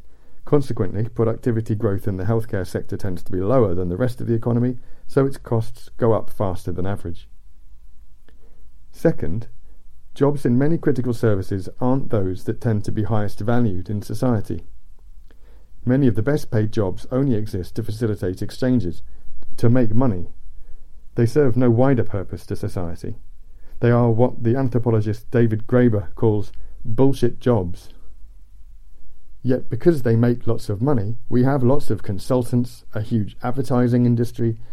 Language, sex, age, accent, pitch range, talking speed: English, male, 50-69, British, 90-120 Hz, 150 wpm